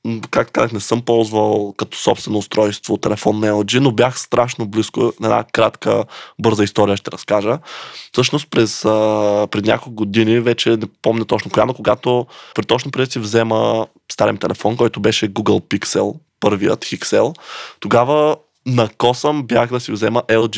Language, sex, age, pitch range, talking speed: Bulgarian, male, 20-39, 105-120 Hz, 160 wpm